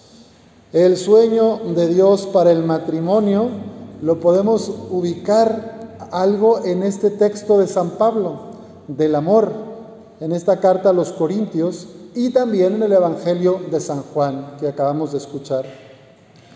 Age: 40-59